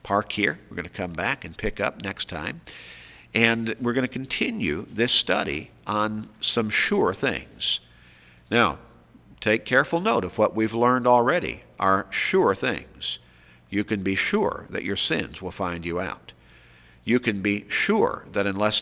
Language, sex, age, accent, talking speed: English, male, 50-69, American, 160 wpm